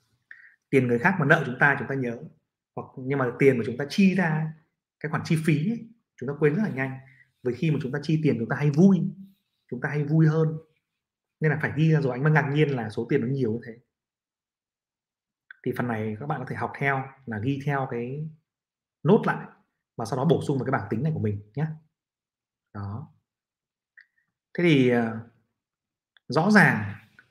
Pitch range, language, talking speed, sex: 120-150 Hz, Vietnamese, 210 wpm, male